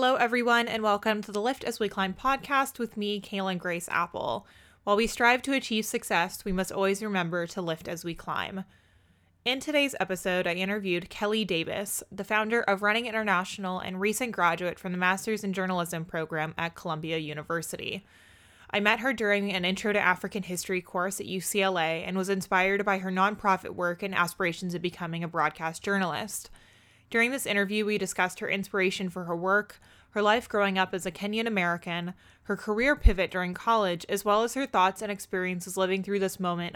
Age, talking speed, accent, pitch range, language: 20-39, 190 wpm, American, 175-205 Hz, English